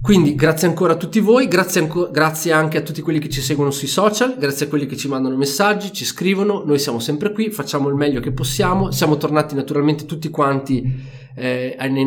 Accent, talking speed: native, 210 wpm